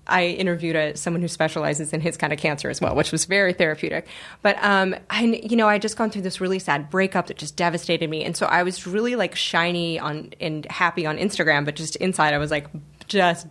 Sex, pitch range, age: female, 155-190 Hz, 20-39